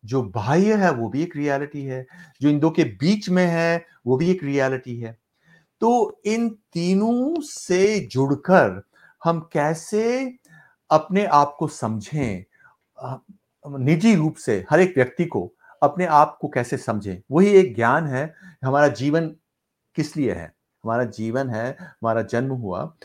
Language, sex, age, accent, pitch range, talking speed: English, male, 60-79, Indian, 130-190 Hz, 150 wpm